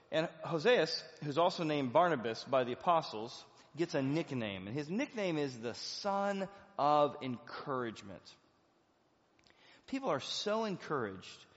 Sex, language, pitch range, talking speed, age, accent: male, English, 125-180 Hz, 125 wpm, 30-49, American